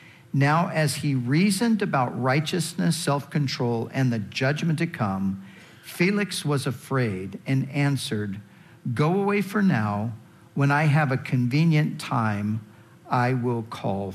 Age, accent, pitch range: 50-69, American, 120-160 Hz